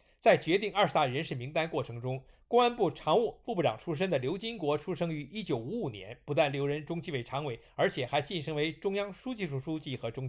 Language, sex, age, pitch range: Chinese, male, 50-69, 130-195 Hz